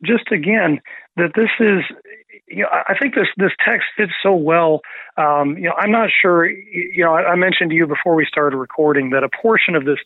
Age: 40-59